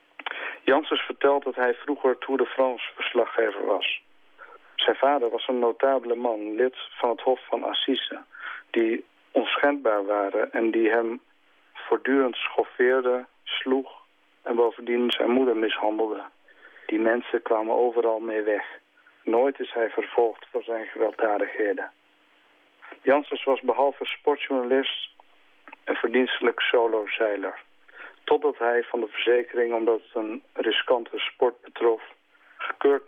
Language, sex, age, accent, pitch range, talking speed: Dutch, male, 50-69, Dutch, 115-135 Hz, 120 wpm